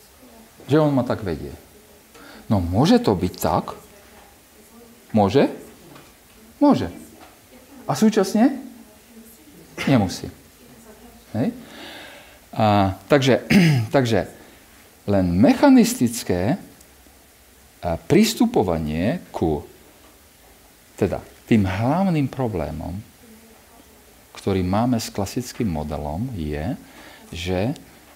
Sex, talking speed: male, 70 wpm